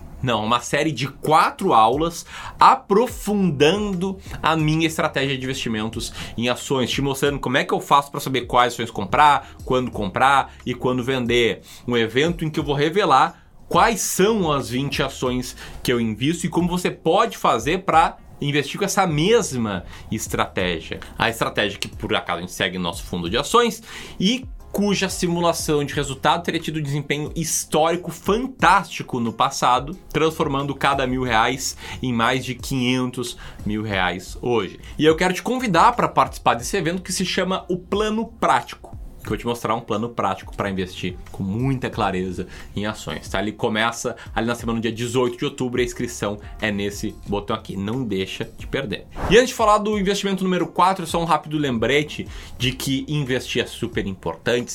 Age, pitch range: 20-39, 110-160 Hz